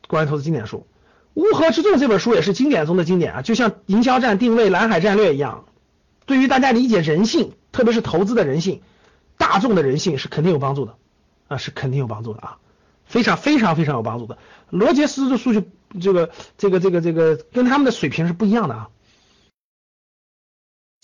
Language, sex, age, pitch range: Chinese, male, 50-69, 160-240 Hz